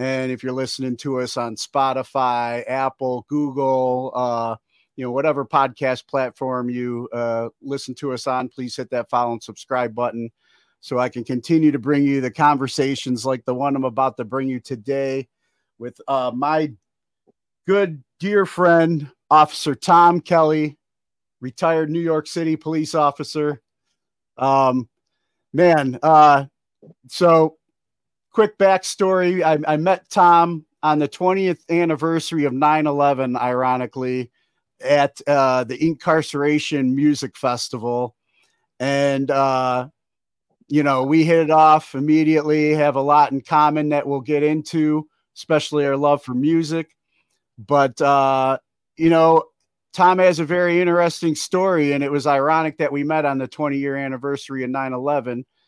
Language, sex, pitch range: English, male, 130-155 Hz